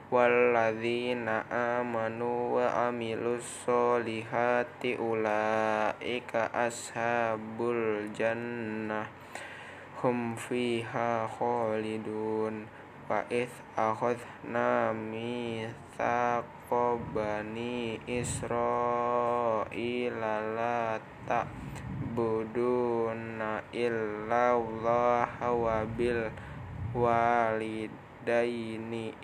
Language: Indonesian